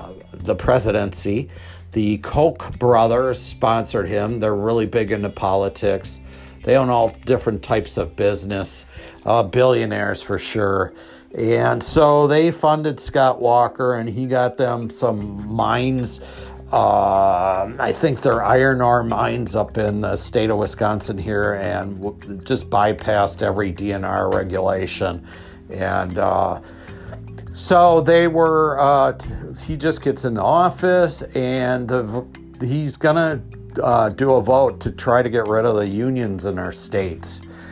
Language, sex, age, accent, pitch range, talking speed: English, male, 50-69, American, 95-130 Hz, 140 wpm